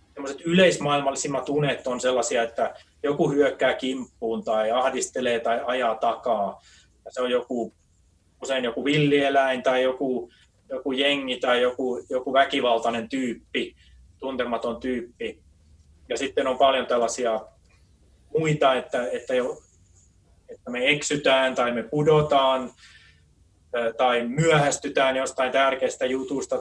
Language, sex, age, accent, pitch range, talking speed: Finnish, male, 20-39, native, 115-145 Hz, 115 wpm